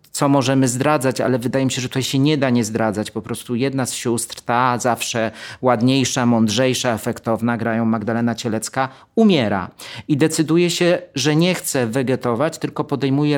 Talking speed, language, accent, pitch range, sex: 165 wpm, Polish, native, 120-150 Hz, male